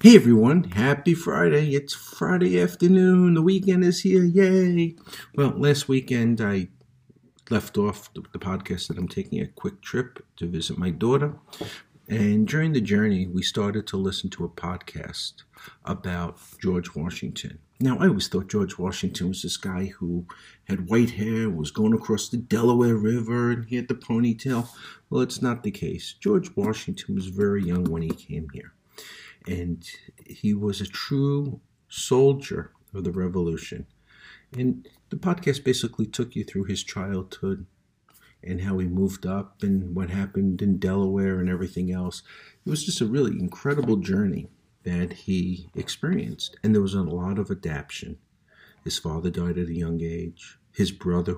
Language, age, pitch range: English, 50-69, 90-125 Hz